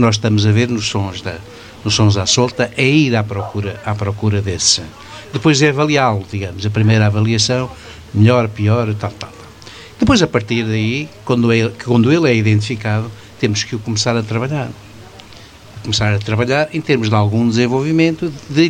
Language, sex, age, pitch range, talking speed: Portuguese, male, 60-79, 105-155 Hz, 175 wpm